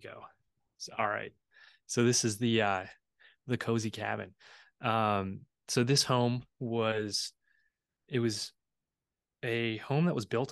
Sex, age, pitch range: male, 20-39, 100-115 Hz